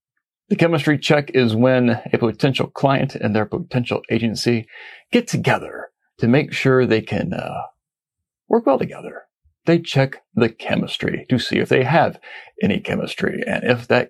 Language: English